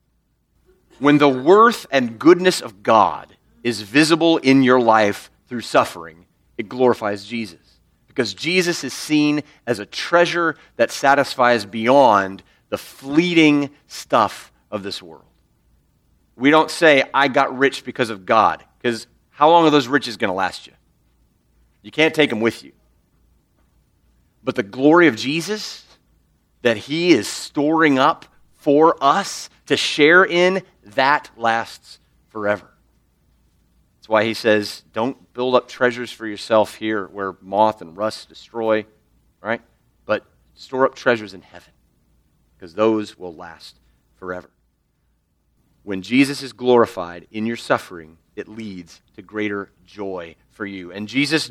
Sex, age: male, 40-59